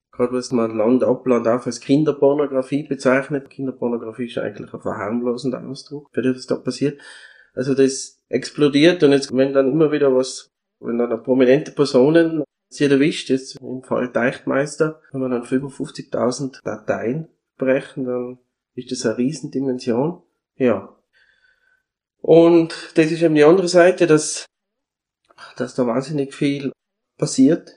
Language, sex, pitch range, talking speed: German, male, 125-145 Hz, 145 wpm